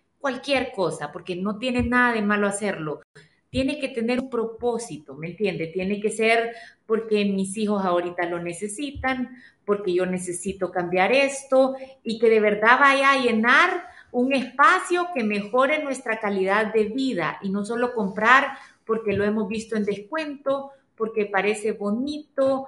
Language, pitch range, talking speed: Spanish, 205-265 Hz, 155 wpm